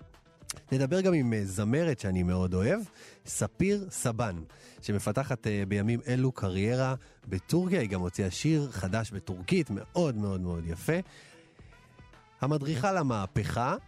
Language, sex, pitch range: Hebrew, male, 100-145 Hz